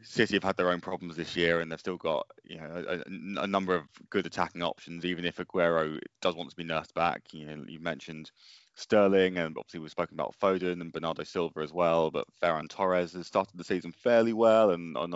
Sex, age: male, 20-39